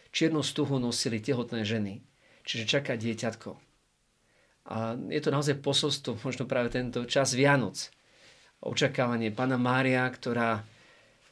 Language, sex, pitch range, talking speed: Slovak, male, 110-130 Hz, 115 wpm